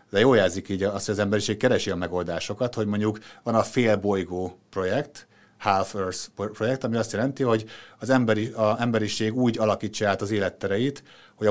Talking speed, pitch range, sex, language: 165 wpm, 95-110 Hz, male, Hungarian